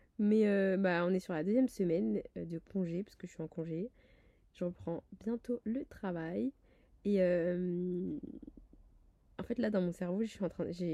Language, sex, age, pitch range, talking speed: French, female, 20-39, 180-230 Hz, 185 wpm